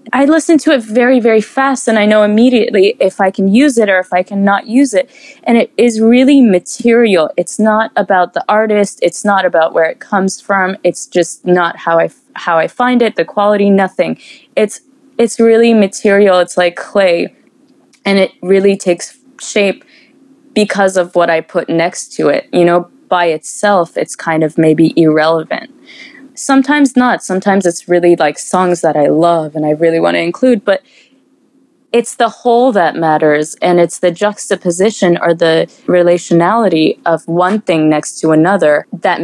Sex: female